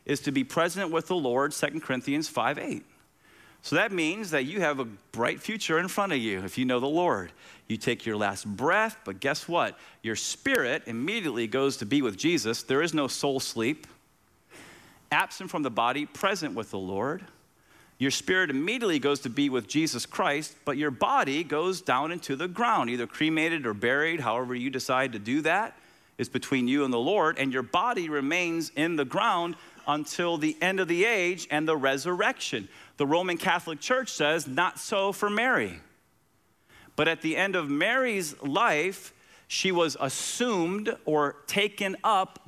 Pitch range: 140-185 Hz